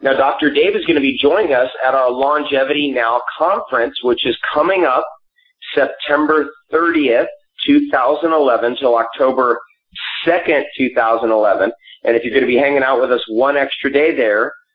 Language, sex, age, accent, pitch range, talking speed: English, male, 30-49, American, 120-170 Hz, 160 wpm